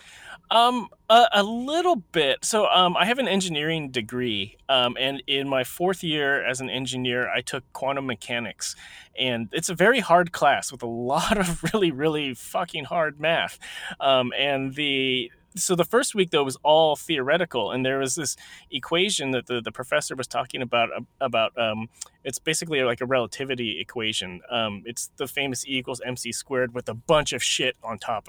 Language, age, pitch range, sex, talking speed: English, 30-49, 125-160 Hz, male, 180 wpm